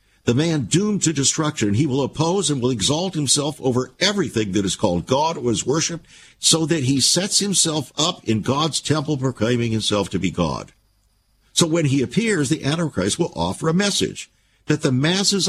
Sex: male